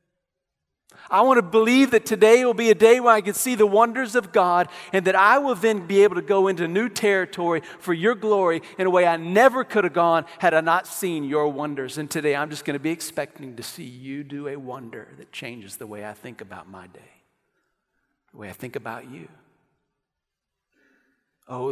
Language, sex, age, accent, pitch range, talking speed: English, male, 50-69, American, 150-200 Hz, 215 wpm